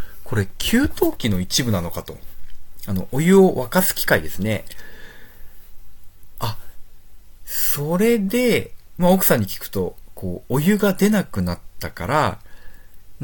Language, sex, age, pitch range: Japanese, male, 40-59, 90-120 Hz